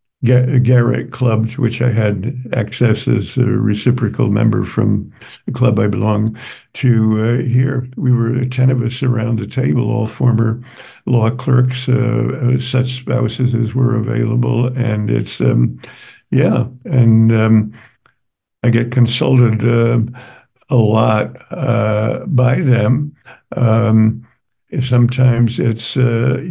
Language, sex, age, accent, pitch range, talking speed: English, male, 60-79, American, 115-125 Hz, 125 wpm